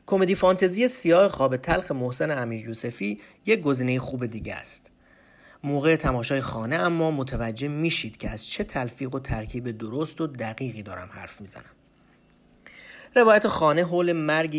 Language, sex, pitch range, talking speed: Persian, male, 110-160 Hz, 150 wpm